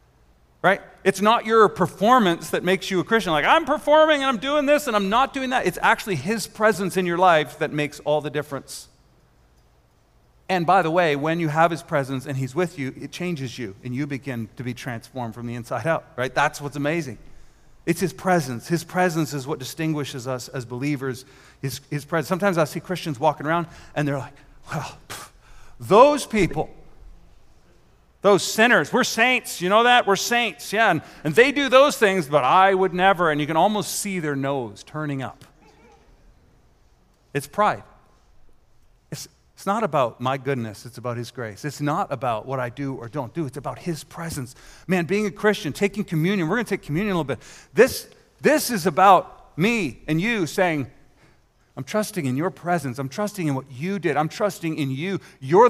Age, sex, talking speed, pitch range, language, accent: 40-59, male, 195 wpm, 140-195 Hz, English, American